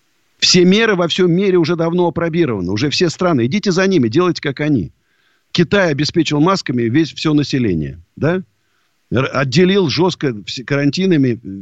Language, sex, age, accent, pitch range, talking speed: Russian, male, 50-69, native, 110-165 Hz, 130 wpm